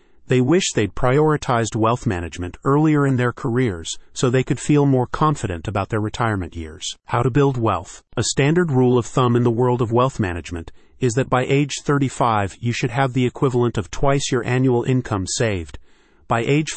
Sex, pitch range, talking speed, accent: male, 110-135 Hz, 190 wpm, American